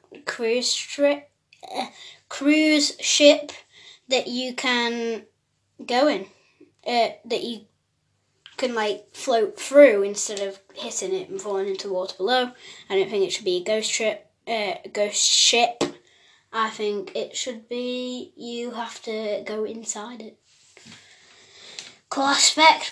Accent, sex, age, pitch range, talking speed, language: British, female, 20-39, 215-285 Hz, 135 wpm, English